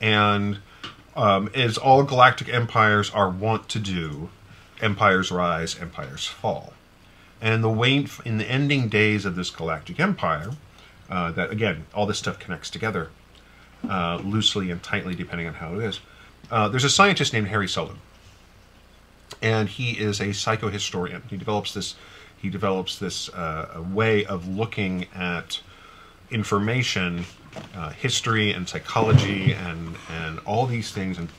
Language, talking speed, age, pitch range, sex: English, 140 wpm, 40-59, 95-115 Hz, male